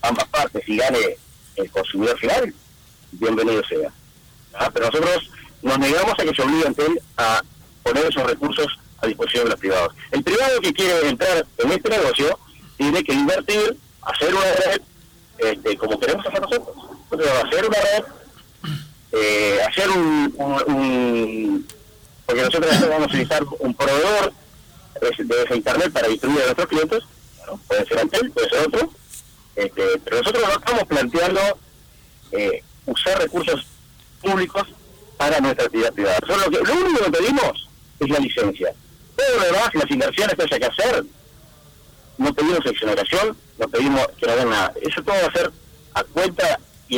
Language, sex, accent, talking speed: Spanish, male, Spanish, 160 wpm